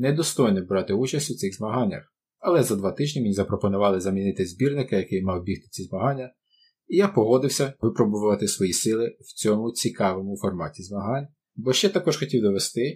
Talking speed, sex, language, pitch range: 160 wpm, male, Ukrainian, 100-125 Hz